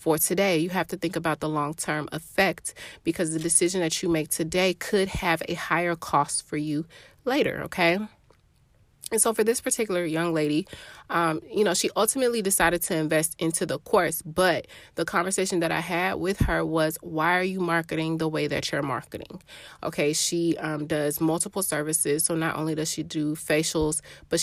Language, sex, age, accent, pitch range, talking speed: English, female, 30-49, American, 160-185 Hz, 185 wpm